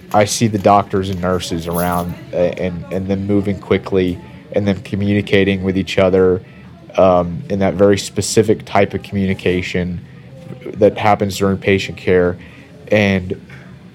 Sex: male